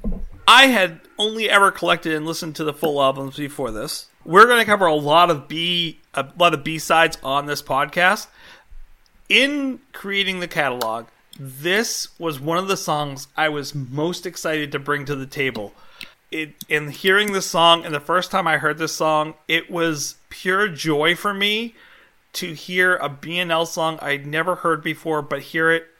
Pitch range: 145-175 Hz